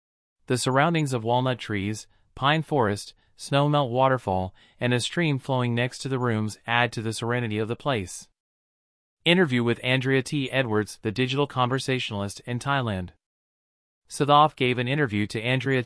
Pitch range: 110-130 Hz